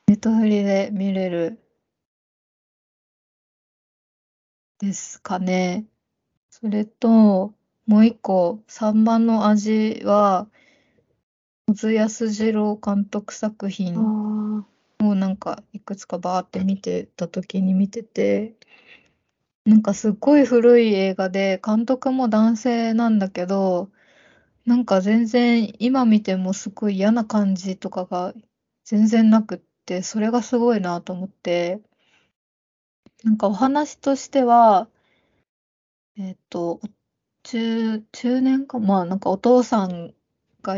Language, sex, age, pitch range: Japanese, female, 20-39, 190-230 Hz